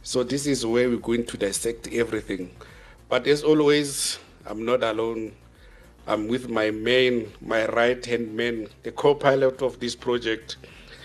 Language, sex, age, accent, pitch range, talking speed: English, male, 50-69, South African, 115-140 Hz, 145 wpm